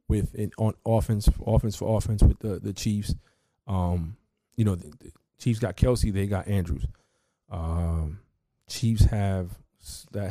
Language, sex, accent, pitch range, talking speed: English, male, American, 90-110 Hz, 150 wpm